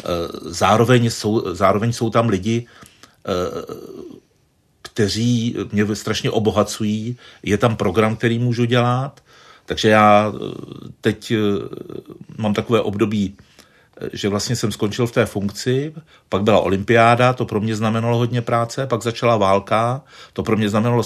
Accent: native